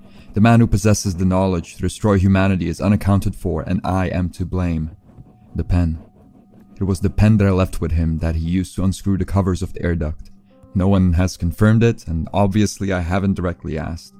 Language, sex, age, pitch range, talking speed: English, male, 30-49, 85-100 Hz, 210 wpm